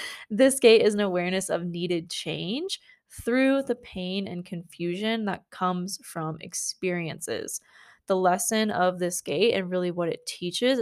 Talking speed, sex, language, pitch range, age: 150 wpm, female, English, 175-220 Hz, 20-39